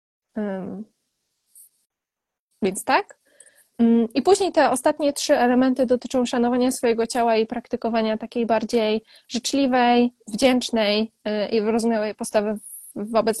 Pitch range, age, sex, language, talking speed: 220-250 Hz, 20-39, female, Polish, 115 wpm